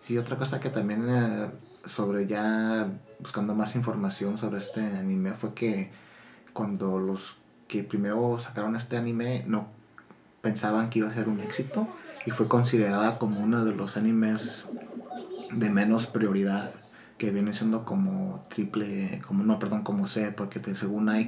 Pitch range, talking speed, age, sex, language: 105-120 Hz, 155 wpm, 30-49, male, Spanish